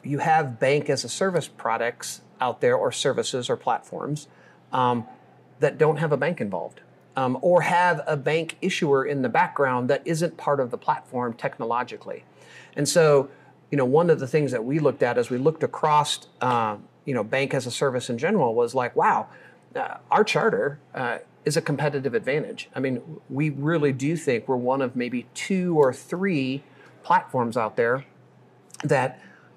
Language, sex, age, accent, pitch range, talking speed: English, male, 40-59, American, 130-160 Hz, 180 wpm